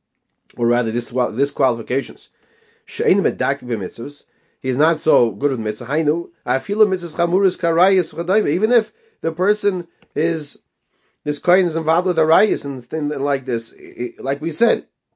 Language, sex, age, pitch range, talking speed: English, male, 30-49, 125-170 Hz, 125 wpm